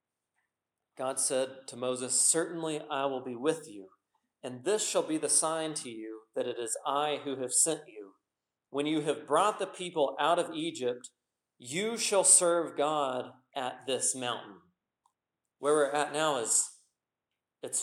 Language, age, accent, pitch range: English, 40-59, American, 125-155 Hz